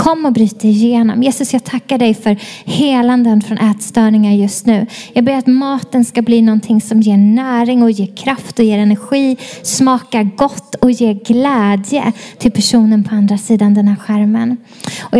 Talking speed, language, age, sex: 175 wpm, Swedish, 20-39, female